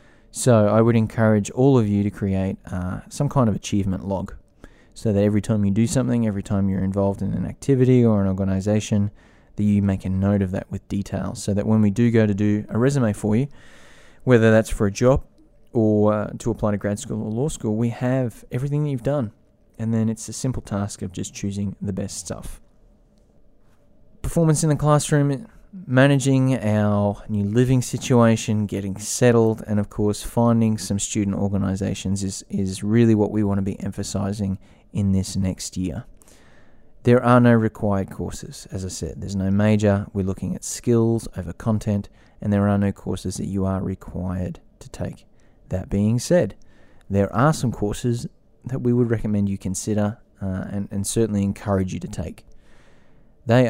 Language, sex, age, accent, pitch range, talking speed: English, male, 20-39, Australian, 100-115 Hz, 185 wpm